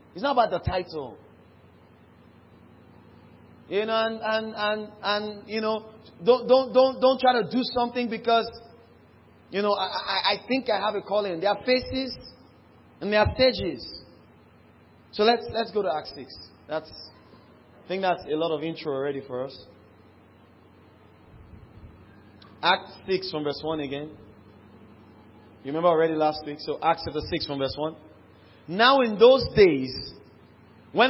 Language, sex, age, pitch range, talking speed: English, male, 30-49, 140-220 Hz, 150 wpm